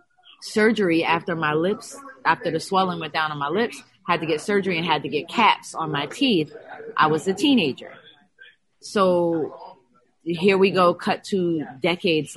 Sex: female